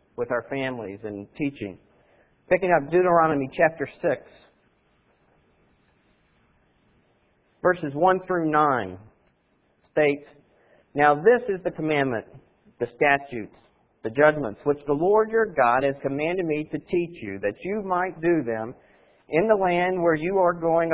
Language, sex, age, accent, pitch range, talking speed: English, male, 50-69, American, 135-180 Hz, 135 wpm